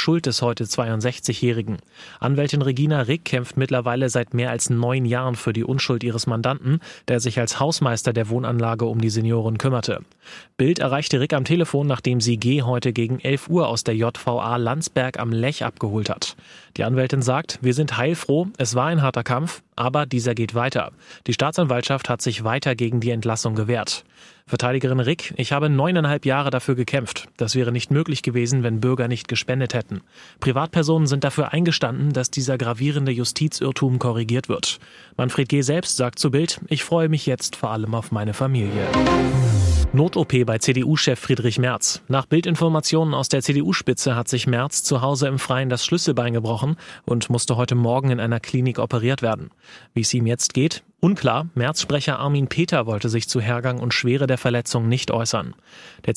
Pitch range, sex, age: 120-140 Hz, male, 30-49